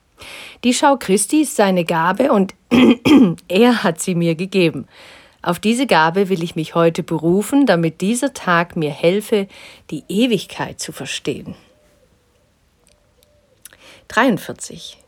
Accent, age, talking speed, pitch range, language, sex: German, 40-59, 120 wpm, 160-205 Hz, German, female